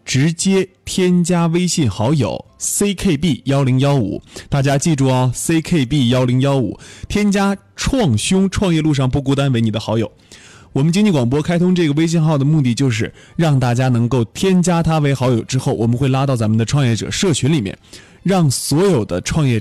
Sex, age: male, 20-39